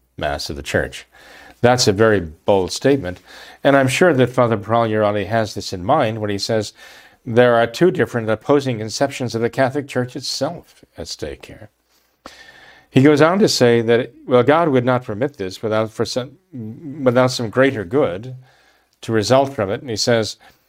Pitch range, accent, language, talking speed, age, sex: 105-130 Hz, American, English, 180 wpm, 50-69, male